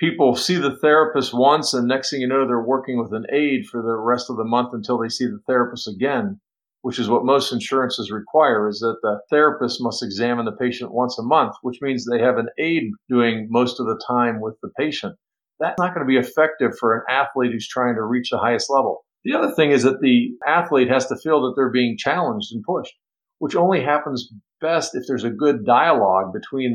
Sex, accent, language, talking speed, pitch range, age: male, American, English, 225 wpm, 120-170 Hz, 50-69